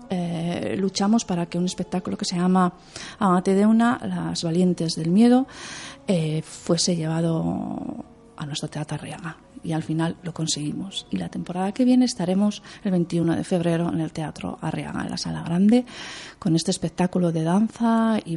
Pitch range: 165-200 Hz